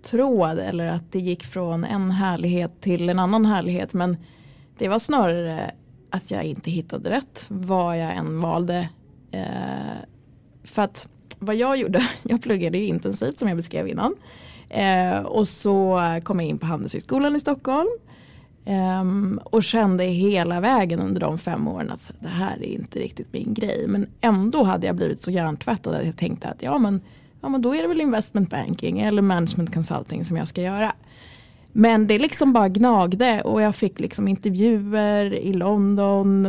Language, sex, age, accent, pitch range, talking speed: Swedish, female, 20-39, native, 175-225 Hz, 170 wpm